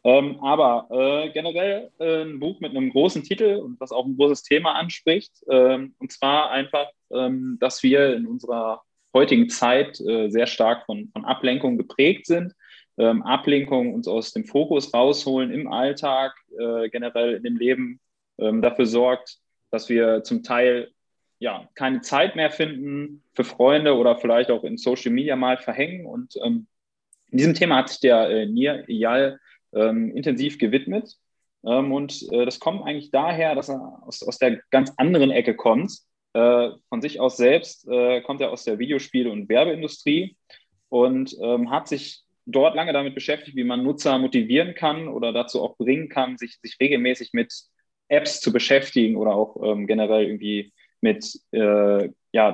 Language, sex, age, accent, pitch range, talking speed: German, male, 20-39, German, 120-155 Hz, 170 wpm